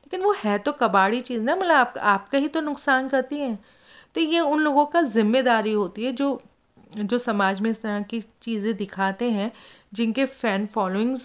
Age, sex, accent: 40-59, female, native